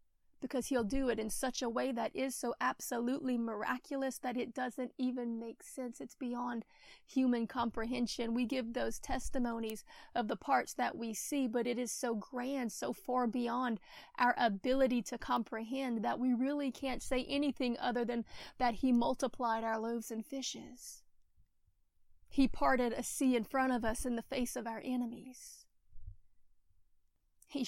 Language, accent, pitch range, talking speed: English, American, 230-255 Hz, 165 wpm